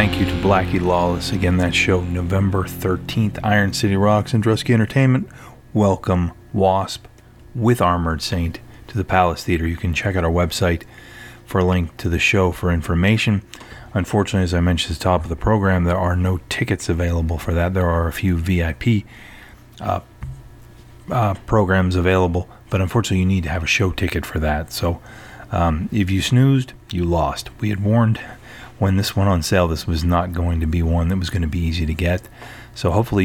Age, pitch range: 30-49, 85-110 Hz